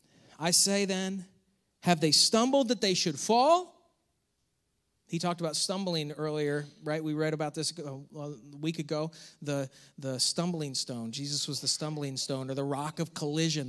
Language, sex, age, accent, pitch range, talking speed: English, male, 30-49, American, 145-195 Hz, 160 wpm